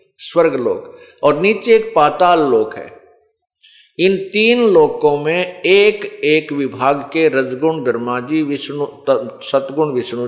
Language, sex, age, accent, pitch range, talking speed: Hindi, male, 50-69, native, 140-215 Hz, 130 wpm